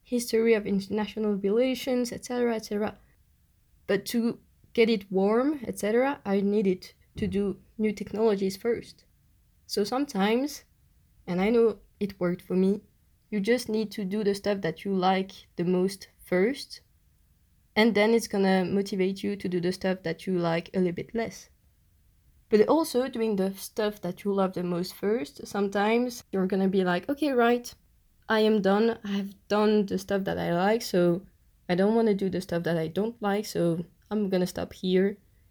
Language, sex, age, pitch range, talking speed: French, female, 20-39, 180-220 Hz, 175 wpm